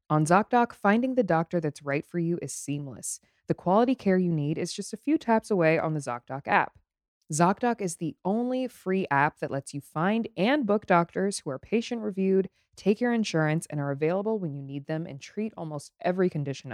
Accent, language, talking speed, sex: American, English, 205 wpm, female